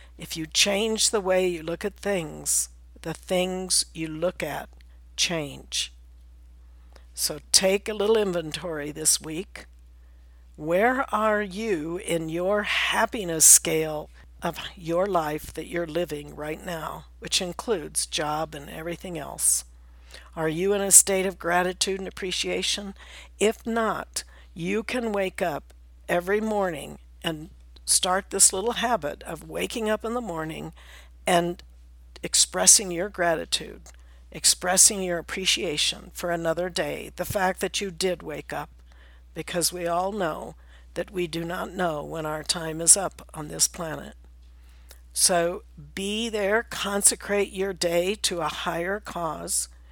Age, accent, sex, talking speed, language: 60-79, American, female, 140 wpm, English